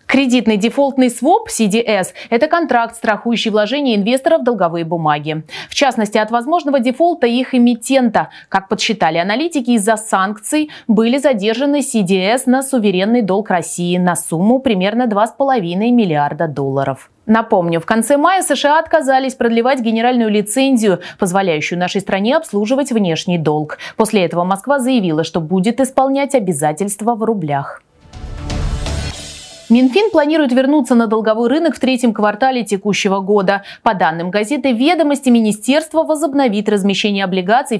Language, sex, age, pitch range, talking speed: Russian, female, 20-39, 195-265 Hz, 130 wpm